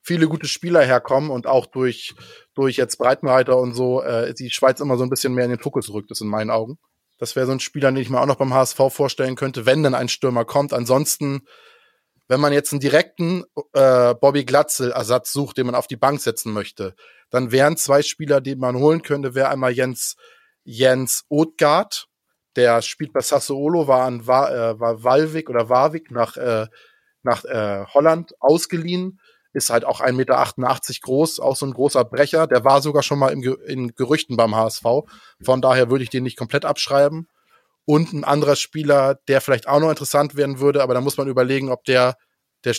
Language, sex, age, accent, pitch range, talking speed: German, male, 20-39, German, 120-140 Hz, 200 wpm